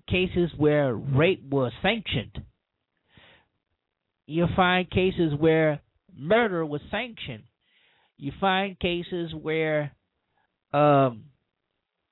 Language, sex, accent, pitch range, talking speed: English, male, American, 135-175 Hz, 85 wpm